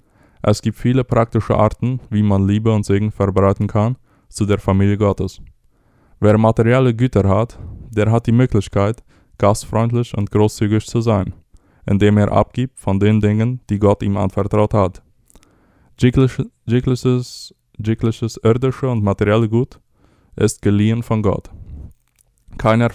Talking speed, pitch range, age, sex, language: 130 wpm, 100-115 Hz, 20-39, male, Spanish